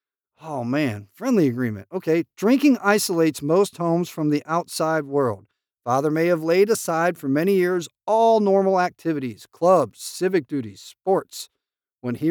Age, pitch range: 50-69, 145-200 Hz